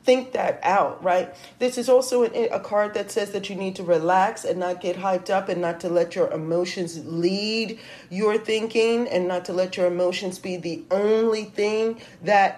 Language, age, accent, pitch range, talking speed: English, 40-59, American, 170-205 Hz, 195 wpm